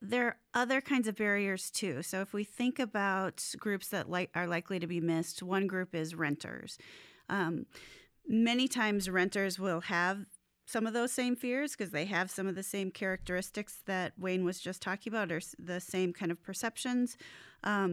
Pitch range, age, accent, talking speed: 180-220 Hz, 30-49, American, 180 wpm